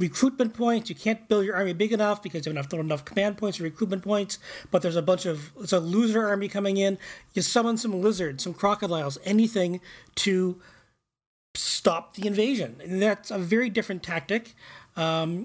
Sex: male